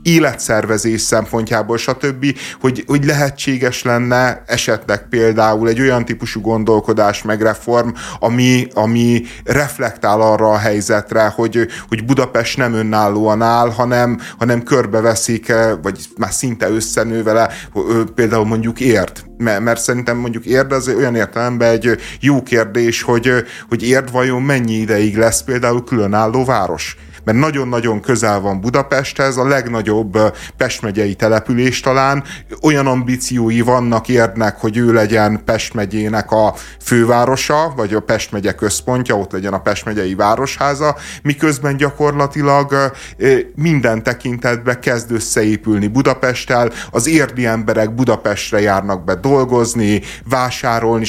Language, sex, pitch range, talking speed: Hungarian, male, 110-130 Hz, 120 wpm